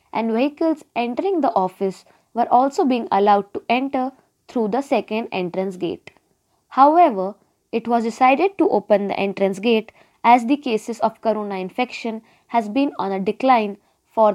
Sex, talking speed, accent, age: female, 155 wpm, native, 20-39